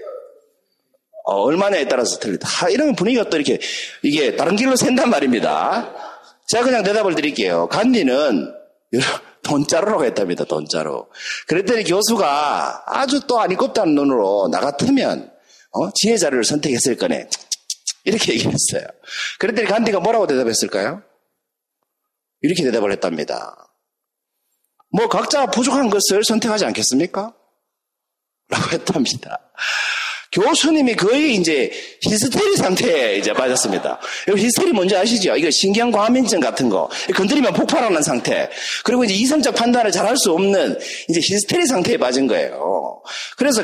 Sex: male